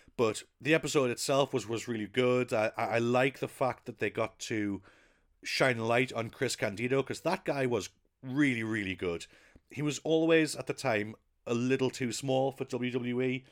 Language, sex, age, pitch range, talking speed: English, male, 40-59, 105-130 Hz, 185 wpm